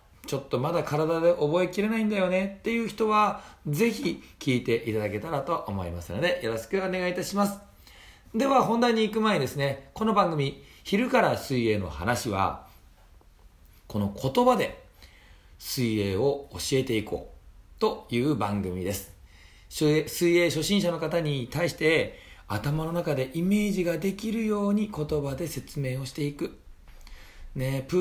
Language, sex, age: Japanese, male, 40-59